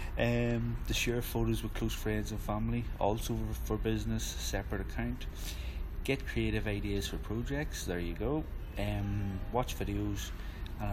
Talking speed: 150 wpm